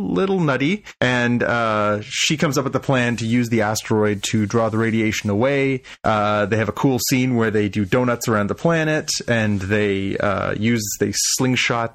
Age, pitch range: 30-49, 105-130 Hz